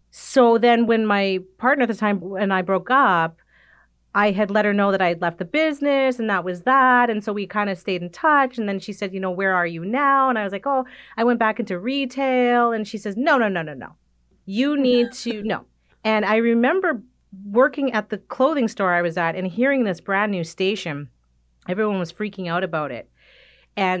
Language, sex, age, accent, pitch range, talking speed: English, female, 30-49, American, 185-245 Hz, 230 wpm